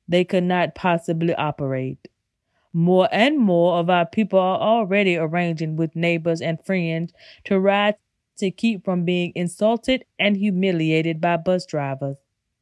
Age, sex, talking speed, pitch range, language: 20-39, female, 145 wpm, 165-200 Hz, English